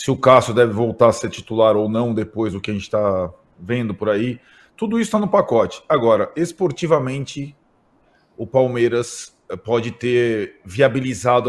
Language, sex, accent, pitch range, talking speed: Portuguese, male, Brazilian, 115-145 Hz, 160 wpm